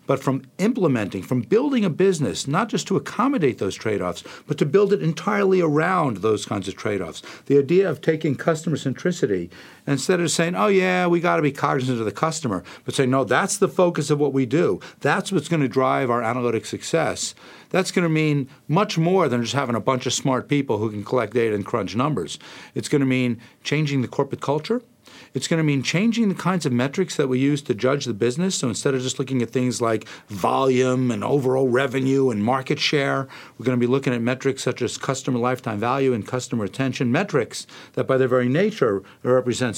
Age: 50-69